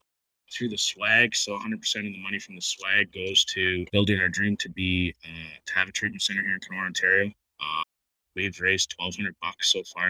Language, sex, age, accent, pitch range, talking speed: English, male, 20-39, American, 90-105 Hz, 210 wpm